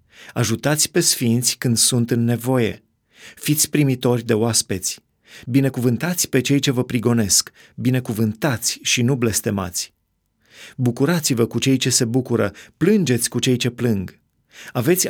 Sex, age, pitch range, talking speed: male, 30-49, 110-135 Hz, 130 wpm